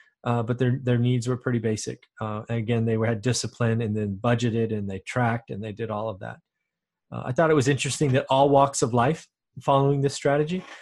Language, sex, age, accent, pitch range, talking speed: English, male, 30-49, American, 115-140 Hz, 220 wpm